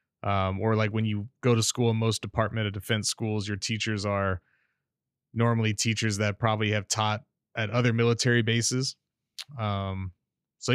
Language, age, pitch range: English, 20-39, 110-130 Hz